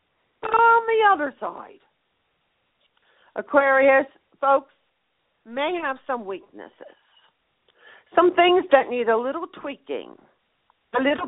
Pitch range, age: 210-300 Hz, 50-69